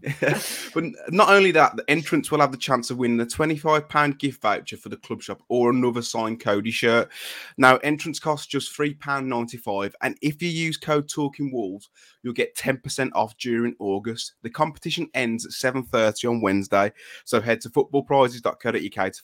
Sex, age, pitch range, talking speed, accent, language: male, 20-39, 115-145 Hz, 185 wpm, British, English